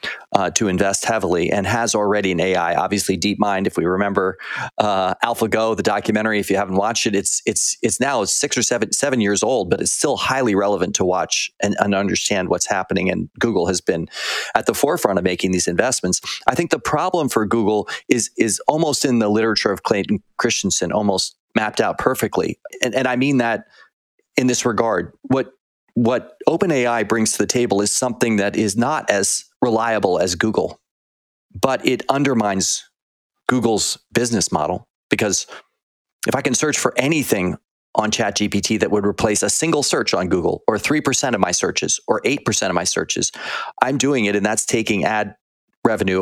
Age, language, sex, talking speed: 30-49, English, male, 185 wpm